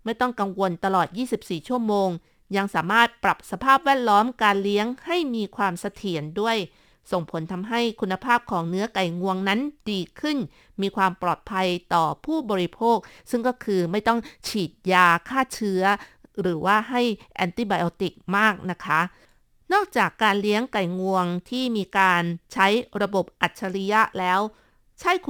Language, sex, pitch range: Thai, female, 185-235 Hz